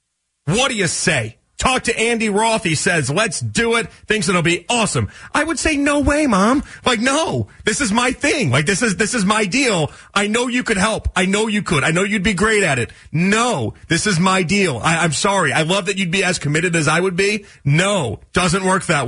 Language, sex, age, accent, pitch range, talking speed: English, male, 40-59, American, 145-200 Hz, 235 wpm